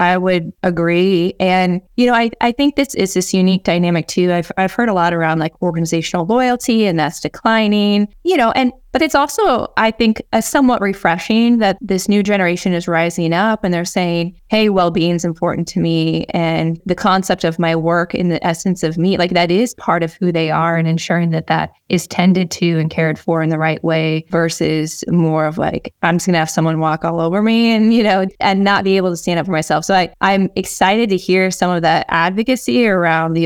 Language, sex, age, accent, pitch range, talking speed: English, female, 20-39, American, 165-190 Hz, 220 wpm